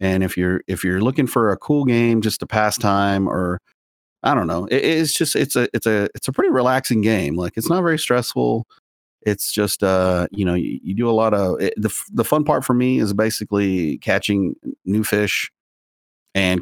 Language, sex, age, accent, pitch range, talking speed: English, male, 30-49, American, 90-110 Hz, 210 wpm